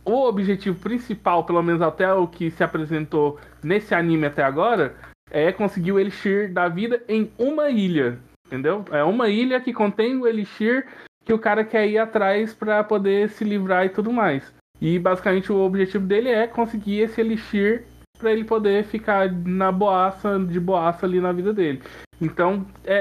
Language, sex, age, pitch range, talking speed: Portuguese, male, 20-39, 175-210 Hz, 175 wpm